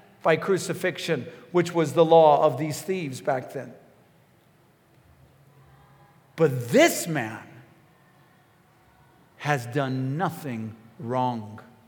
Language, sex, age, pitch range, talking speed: English, male, 50-69, 170-260 Hz, 90 wpm